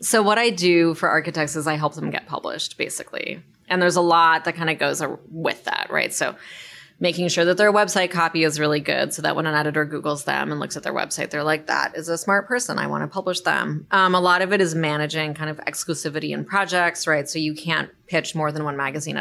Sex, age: female, 20-39